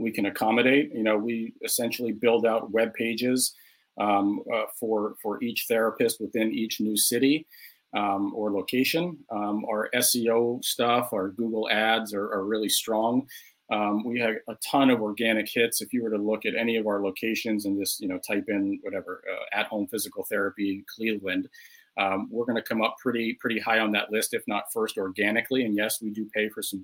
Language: English